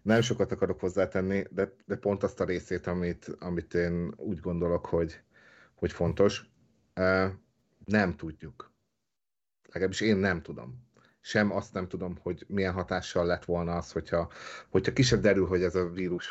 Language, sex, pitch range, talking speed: Hungarian, male, 85-105 Hz, 155 wpm